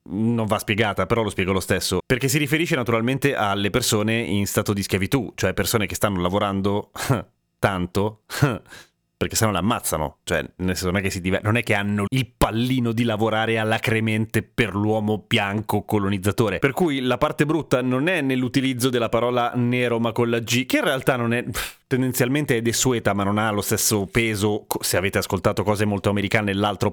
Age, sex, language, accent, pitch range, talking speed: 30-49, male, Italian, native, 100-130 Hz, 190 wpm